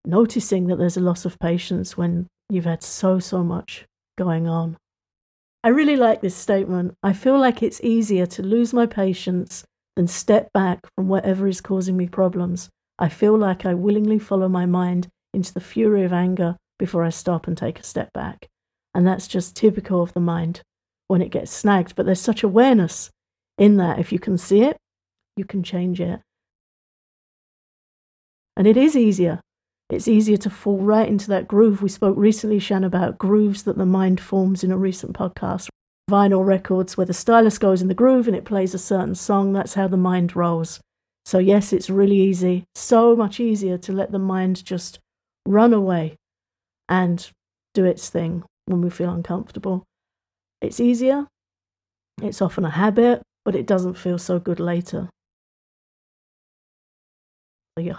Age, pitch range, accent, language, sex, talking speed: 50-69, 175-205 Hz, British, English, female, 175 wpm